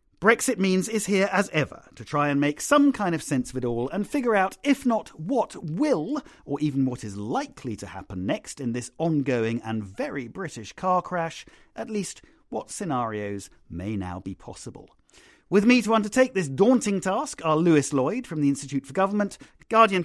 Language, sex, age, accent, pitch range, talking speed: English, male, 40-59, British, 115-170 Hz, 190 wpm